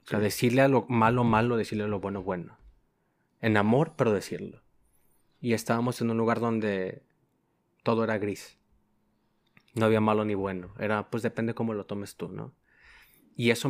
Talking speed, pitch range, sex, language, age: 175 wpm, 105-135 Hz, male, Spanish, 20-39